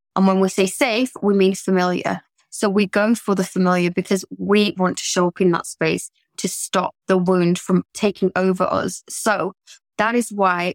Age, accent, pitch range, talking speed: 20-39, British, 190-220 Hz, 195 wpm